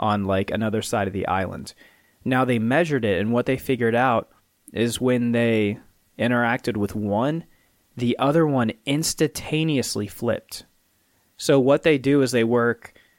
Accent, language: American, English